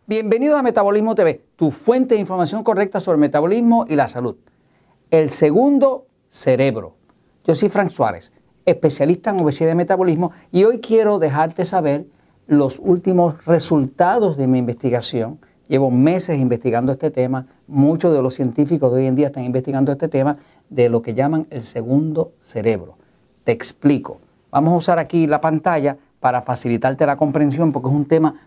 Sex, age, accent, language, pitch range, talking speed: male, 50-69, American, Spanish, 130-175 Hz, 165 wpm